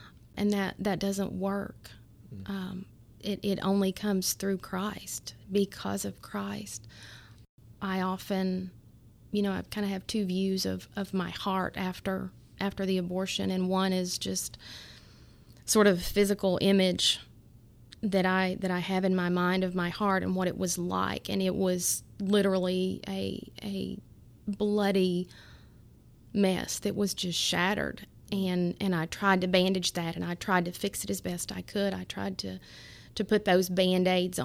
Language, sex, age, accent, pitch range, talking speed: English, female, 30-49, American, 115-195 Hz, 160 wpm